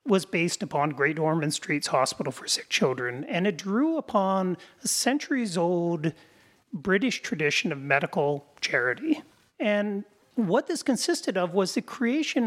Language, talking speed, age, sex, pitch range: English, 140 wpm, 40-59, male, 180-240 Hz